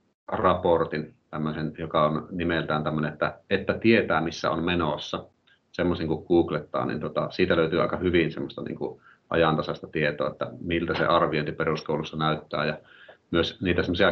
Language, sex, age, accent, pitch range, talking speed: Finnish, male, 40-59, native, 75-85 Hz, 145 wpm